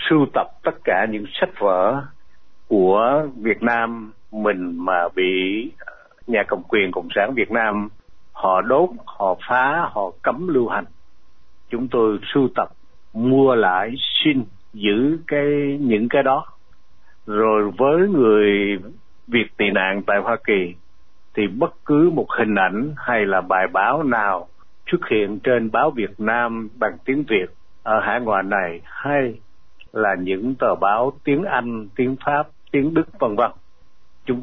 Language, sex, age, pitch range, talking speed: Vietnamese, male, 60-79, 100-135 Hz, 150 wpm